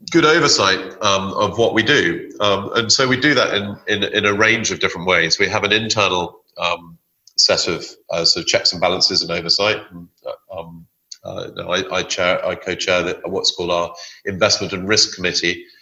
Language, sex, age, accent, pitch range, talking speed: English, male, 40-59, British, 90-105 Hz, 195 wpm